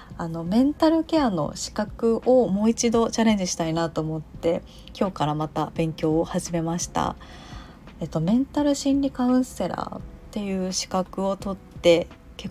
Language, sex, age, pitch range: Japanese, female, 20-39, 160-200 Hz